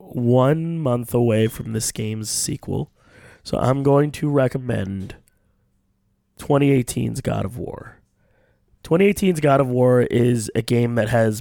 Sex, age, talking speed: male, 20-39, 130 wpm